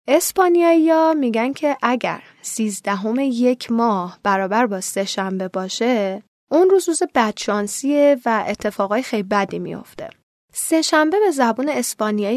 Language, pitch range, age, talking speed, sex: Persian, 205-265 Hz, 10-29, 130 wpm, female